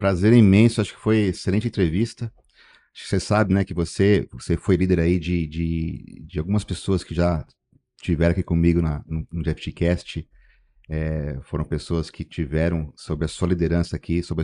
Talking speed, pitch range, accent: 175 wpm, 85-100 Hz, Brazilian